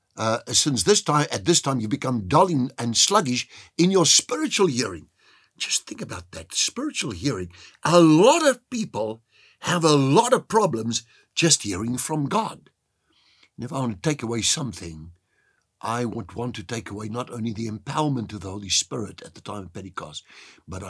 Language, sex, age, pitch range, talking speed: English, male, 60-79, 105-155 Hz, 180 wpm